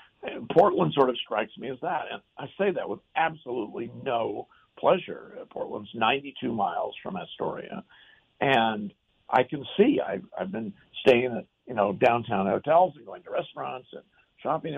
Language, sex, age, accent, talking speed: English, male, 50-69, American, 165 wpm